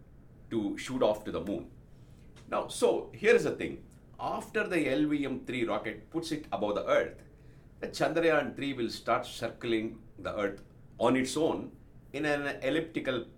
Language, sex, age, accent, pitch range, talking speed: English, male, 60-79, Indian, 115-160 Hz, 150 wpm